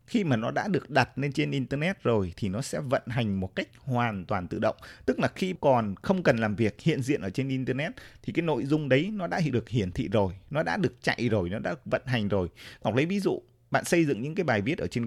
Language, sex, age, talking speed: Vietnamese, male, 20-39, 270 wpm